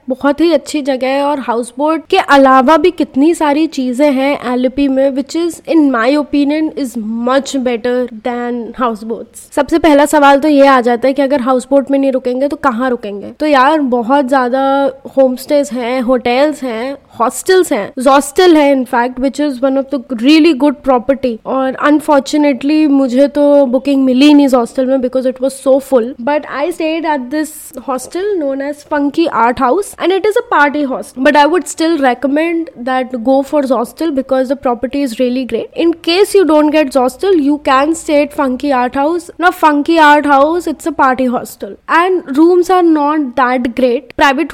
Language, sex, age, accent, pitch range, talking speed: English, female, 20-39, Indian, 260-300 Hz, 165 wpm